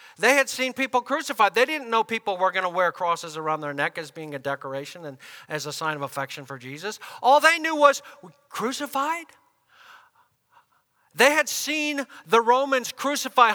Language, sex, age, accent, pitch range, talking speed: English, male, 50-69, American, 200-270 Hz, 175 wpm